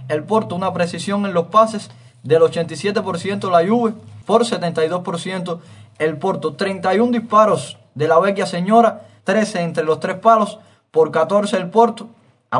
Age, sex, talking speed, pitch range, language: 20-39, male, 150 wpm, 160-215 Hz, Spanish